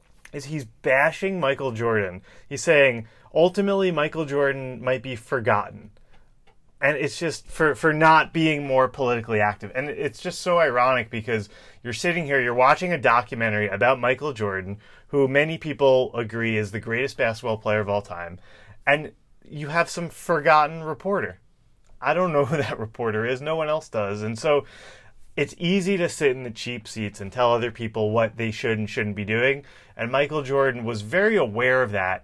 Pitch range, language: 110-150 Hz, English